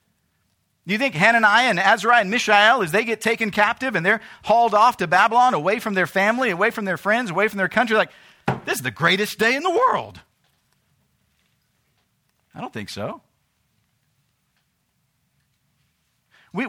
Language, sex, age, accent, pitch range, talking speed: English, male, 40-59, American, 180-230 Hz, 160 wpm